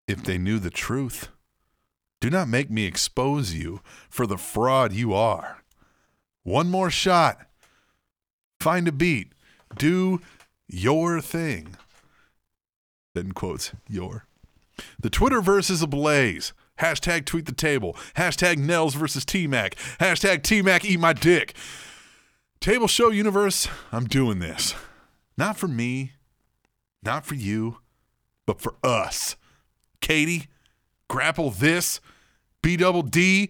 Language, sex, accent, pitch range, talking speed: English, male, American, 130-185 Hz, 115 wpm